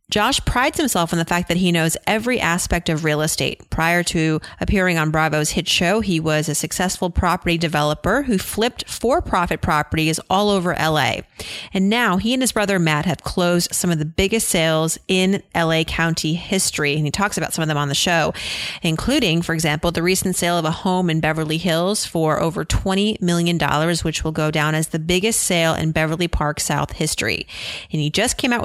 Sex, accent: female, American